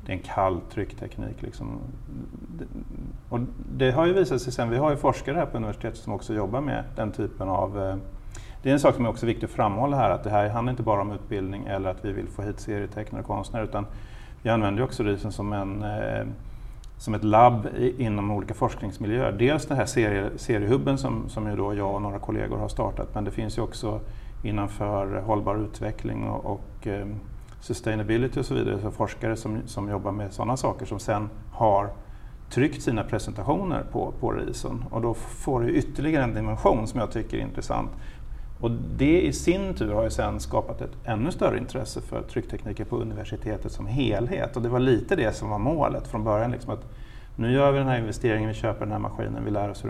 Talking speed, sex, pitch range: 205 wpm, male, 105-125 Hz